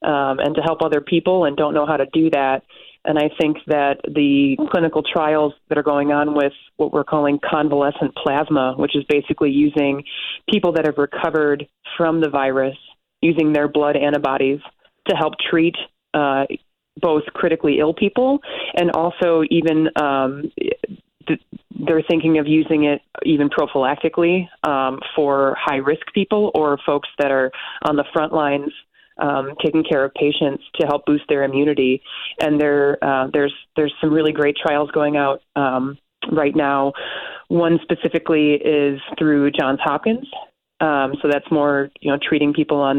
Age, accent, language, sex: 30-49, American, English, female